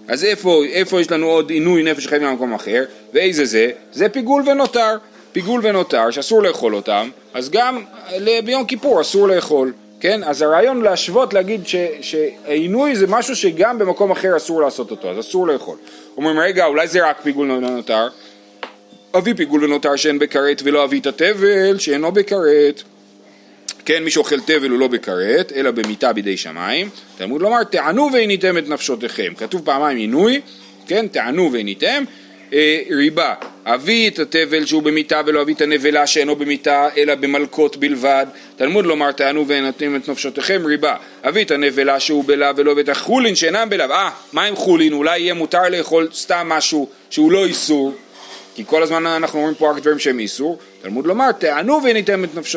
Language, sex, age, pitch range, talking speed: Hebrew, male, 40-59, 140-200 Hz, 155 wpm